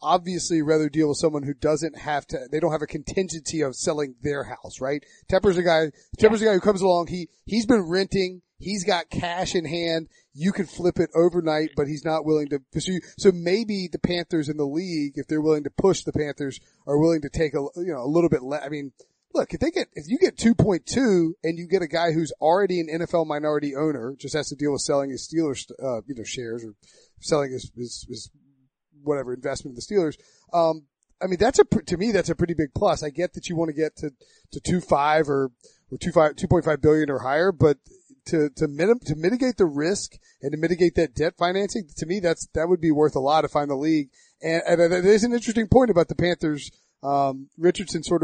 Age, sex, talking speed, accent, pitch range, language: 30-49, male, 230 wpm, American, 150-180 Hz, English